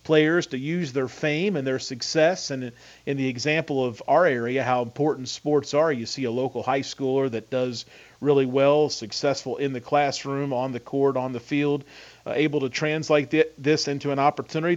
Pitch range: 125-155 Hz